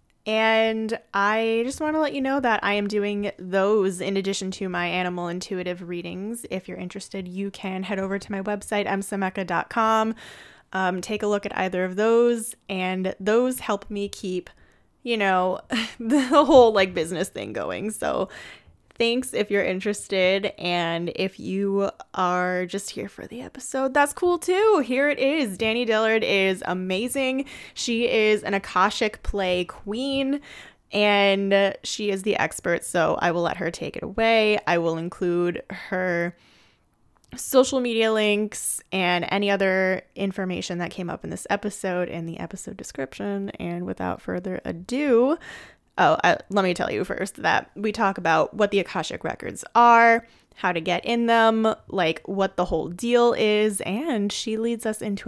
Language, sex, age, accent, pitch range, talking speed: English, female, 20-39, American, 185-230 Hz, 165 wpm